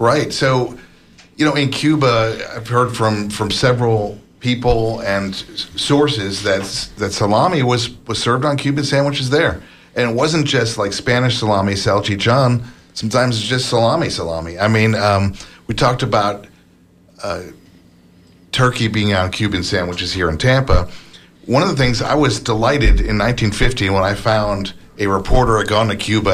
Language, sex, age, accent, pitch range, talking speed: English, male, 50-69, American, 95-125 Hz, 155 wpm